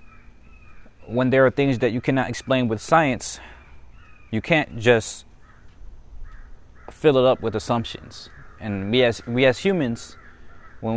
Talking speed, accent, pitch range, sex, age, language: 130 wpm, American, 90-115 Hz, male, 20-39, English